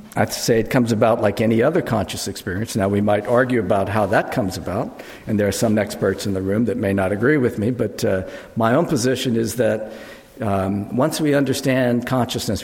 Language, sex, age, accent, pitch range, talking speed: English, male, 50-69, American, 105-130 Hz, 215 wpm